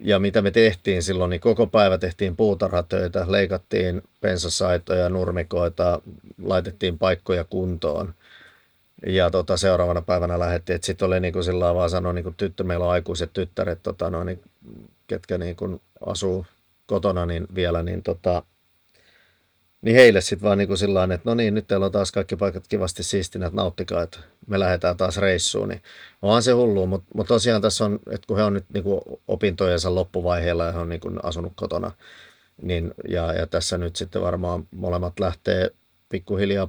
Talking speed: 160 wpm